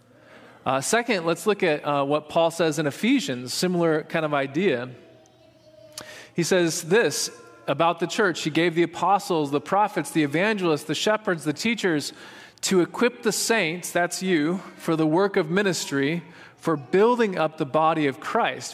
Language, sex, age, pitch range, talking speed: English, male, 20-39, 145-180 Hz, 165 wpm